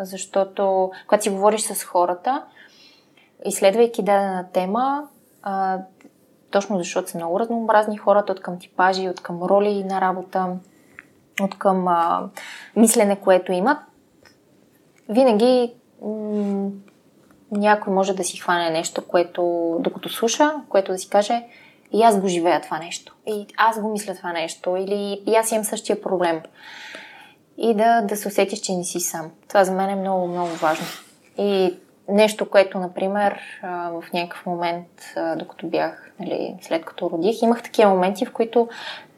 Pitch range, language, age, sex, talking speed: 185-220 Hz, Bulgarian, 20-39, female, 145 wpm